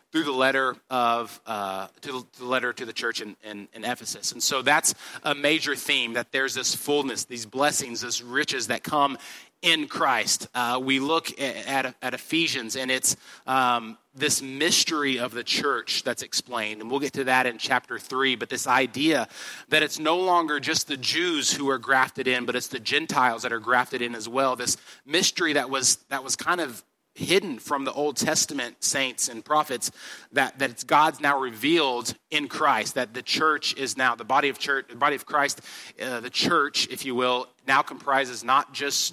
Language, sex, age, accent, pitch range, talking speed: English, male, 30-49, American, 120-140 Hz, 210 wpm